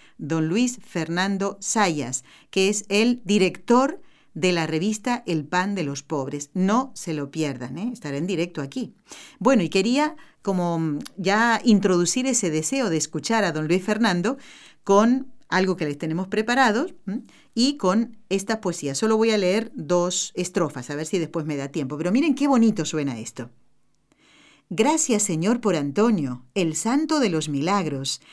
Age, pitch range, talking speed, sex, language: 50-69, 155-230 Hz, 165 wpm, female, Spanish